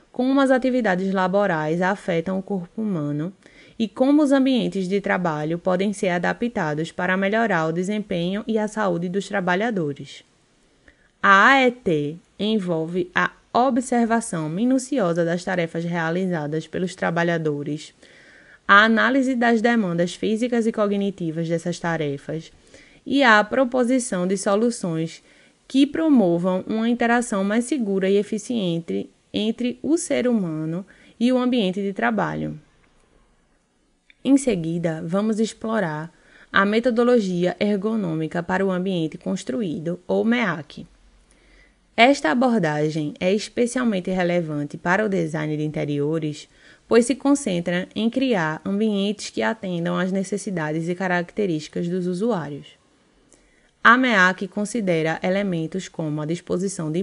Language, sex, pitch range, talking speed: Portuguese, female, 170-225 Hz, 120 wpm